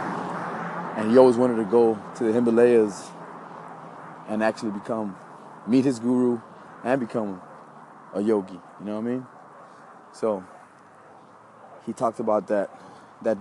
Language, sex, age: English, male, 20-39